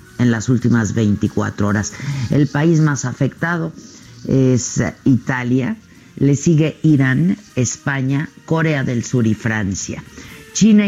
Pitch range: 115-150 Hz